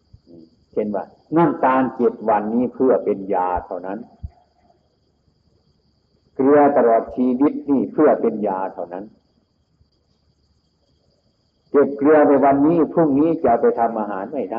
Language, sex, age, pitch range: Thai, male, 60-79, 90-135 Hz